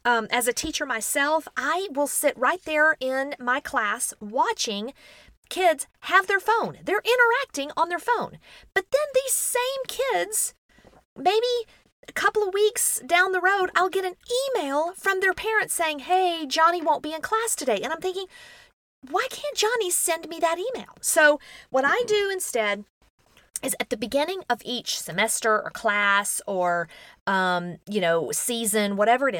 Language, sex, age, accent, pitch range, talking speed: English, female, 40-59, American, 210-350 Hz, 165 wpm